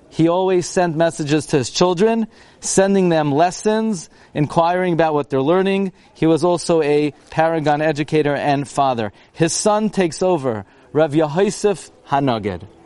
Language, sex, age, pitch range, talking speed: English, male, 40-59, 140-180 Hz, 140 wpm